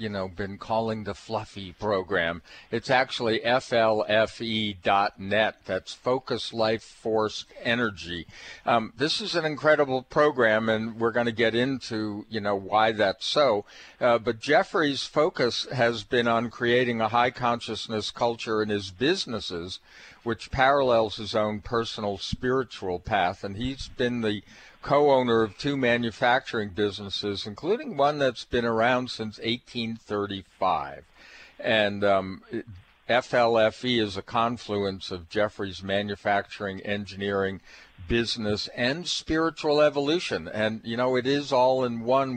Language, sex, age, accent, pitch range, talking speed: English, male, 50-69, American, 105-125 Hz, 135 wpm